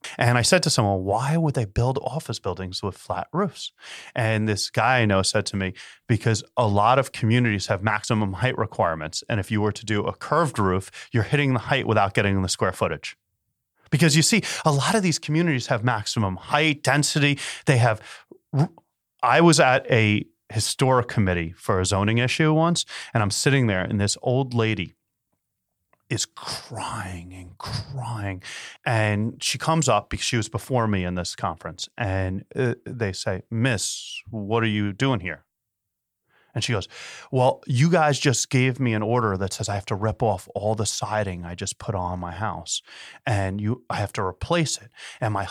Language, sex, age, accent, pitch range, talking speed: English, male, 30-49, American, 100-130 Hz, 190 wpm